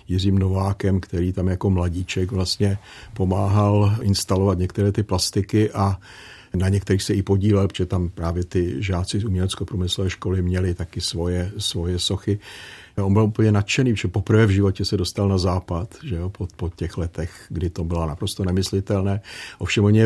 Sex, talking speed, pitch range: male, 170 wpm, 90-100 Hz